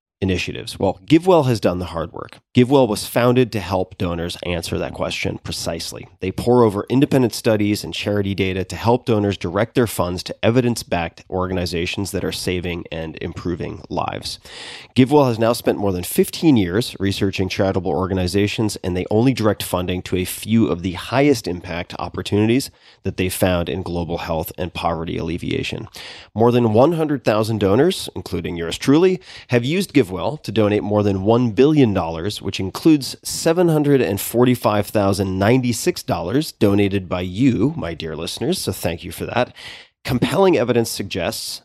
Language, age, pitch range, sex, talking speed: English, 30-49, 90-120 Hz, male, 155 wpm